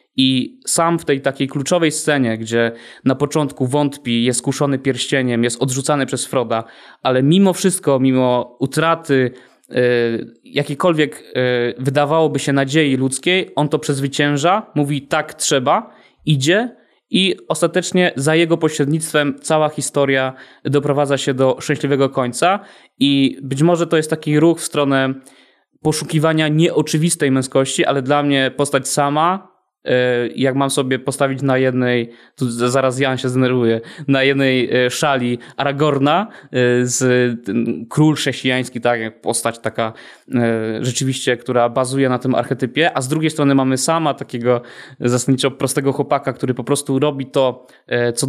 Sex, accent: male, native